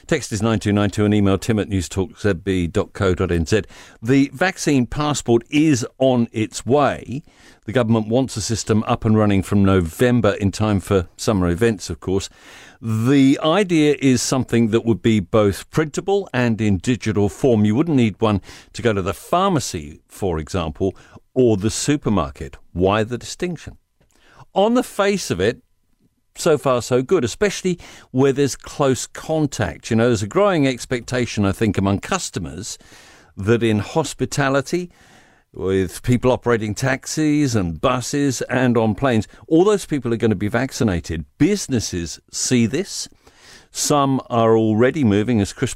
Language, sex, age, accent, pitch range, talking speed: English, male, 50-69, British, 100-135 Hz, 150 wpm